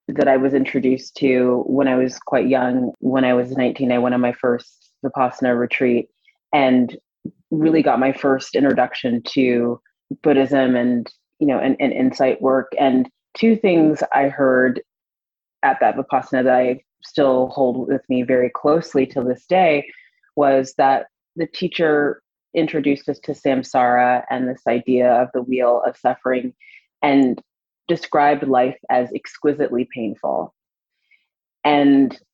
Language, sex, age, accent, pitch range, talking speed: English, female, 30-49, American, 125-145 Hz, 145 wpm